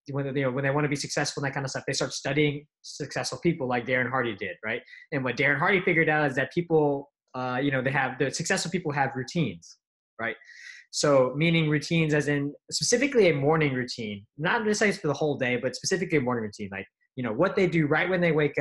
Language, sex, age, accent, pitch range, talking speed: English, male, 20-39, American, 130-155 Hz, 230 wpm